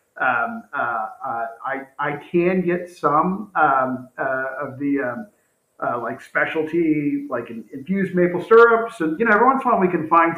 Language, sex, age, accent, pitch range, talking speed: English, male, 50-69, American, 140-175 Hz, 175 wpm